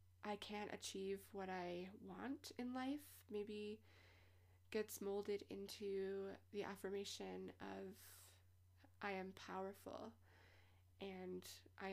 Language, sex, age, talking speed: English, female, 20-39, 100 wpm